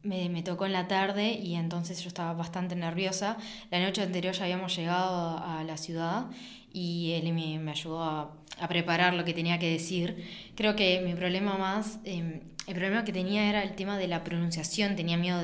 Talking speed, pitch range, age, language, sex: 200 wpm, 170-205 Hz, 20-39, Spanish, female